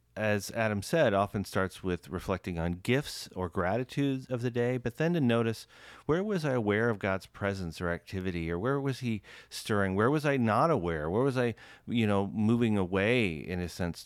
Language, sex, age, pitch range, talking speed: English, male, 40-59, 95-125 Hz, 200 wpm